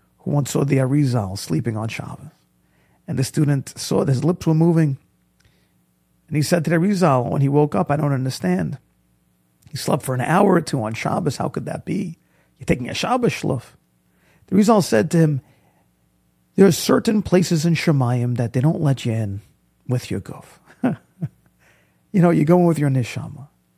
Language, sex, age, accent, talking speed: English, male, 40-59, American, 190 wpm